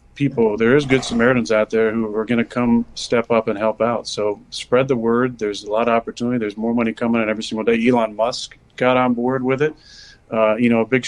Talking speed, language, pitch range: 250 wpm, English, 110-125 Hz